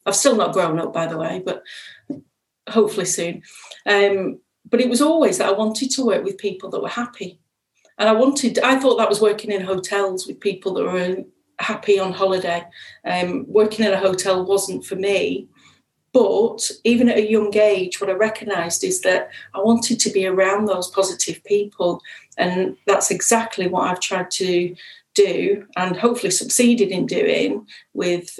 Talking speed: 175 wpm